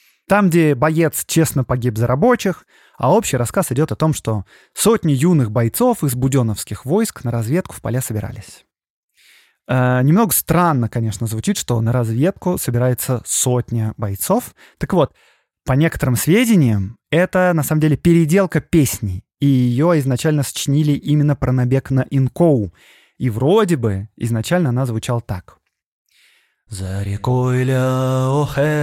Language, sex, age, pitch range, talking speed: Russian, male, 20-39, 130-185 Hz, 135 wpm